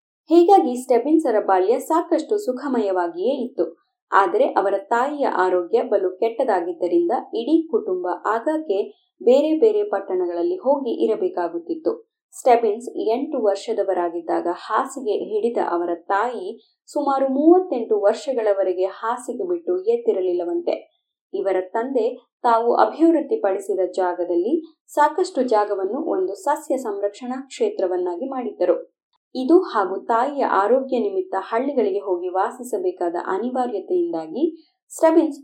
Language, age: Kannada, 20-39